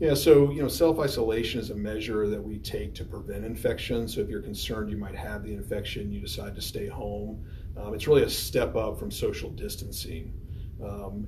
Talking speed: 200 wpm